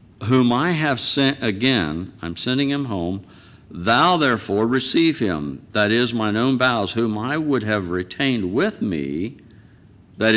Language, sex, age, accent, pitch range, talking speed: English, male, 60-79, American, 85-115 Hz, 150 wpm